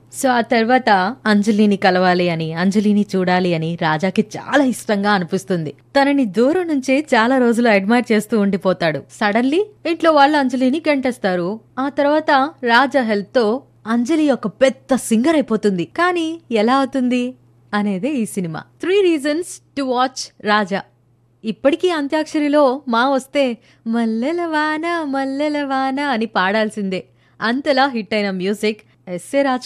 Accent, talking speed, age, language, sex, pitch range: native, 125 wpm, 20-39, Telugu, female, 195-265 Hz